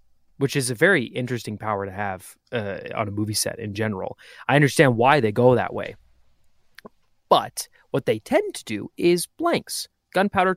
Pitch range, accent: 110-135 Hz, American